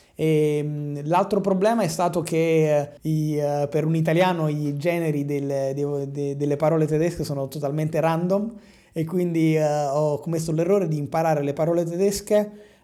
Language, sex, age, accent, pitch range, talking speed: Italian, male, 30-49, native, 145-165 Hz, 120 wpm